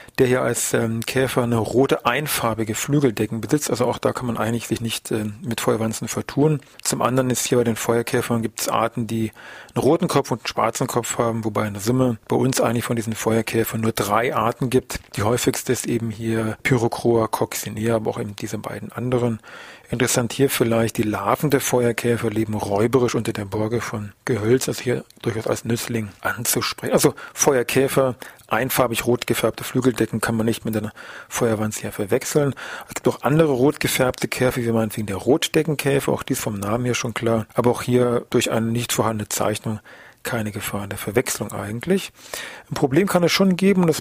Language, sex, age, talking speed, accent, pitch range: German, male, 40-59, 195 wpm, German, 115-140 Hz